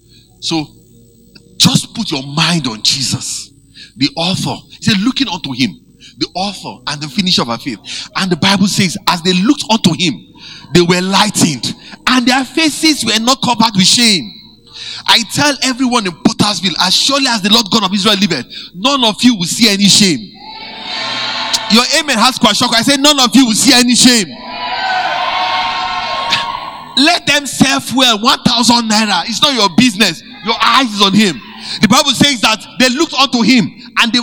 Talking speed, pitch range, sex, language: 175 wpm, 220-290 Hz, male, English